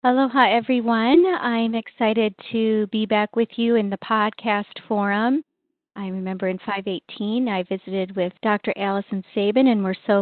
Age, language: 40-59, English